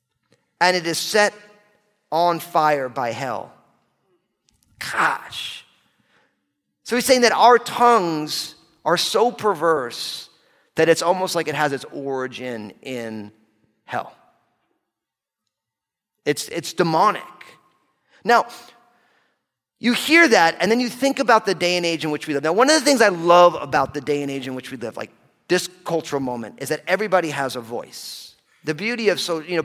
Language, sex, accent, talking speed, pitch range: English, male, American, 160 wpm, 140-195 Hz